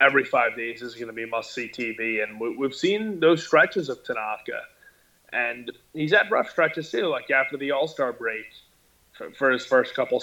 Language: English